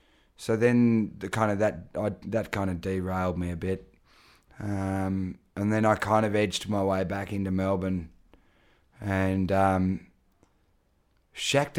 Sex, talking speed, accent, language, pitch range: male, 150 wpm, Australian, English, 90-105 Hz